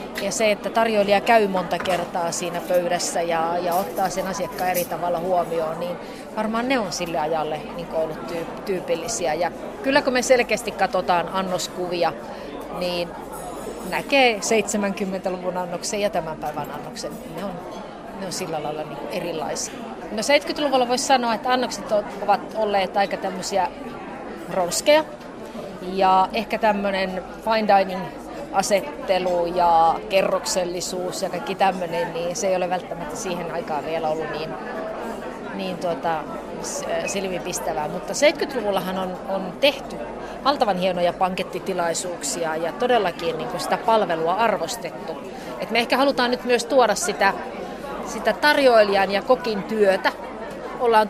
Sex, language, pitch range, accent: female, Finnish, 180-225 Hz, native